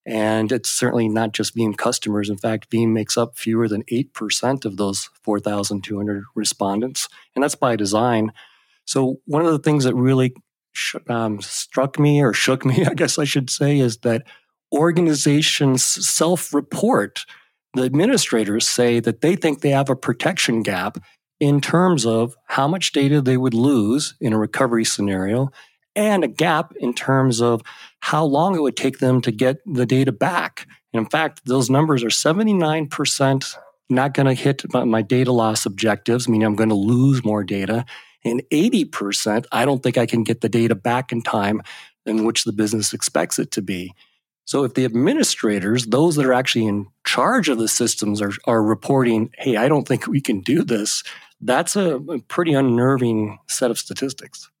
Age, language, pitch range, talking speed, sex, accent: 40-59, English, 110-140 Hz, 180 wpm, male, American